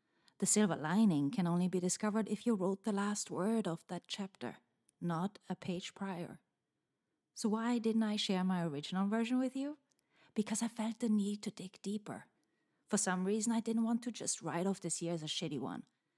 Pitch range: 185-230 Hz